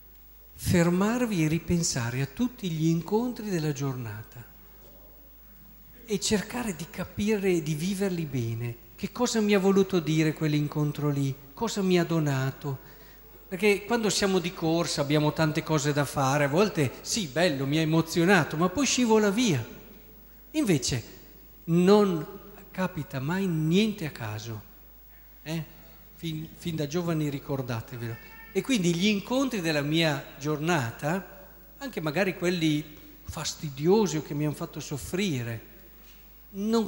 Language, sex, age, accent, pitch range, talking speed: Italian, male, 50-69, native, 150-205 Hz, 130 wpm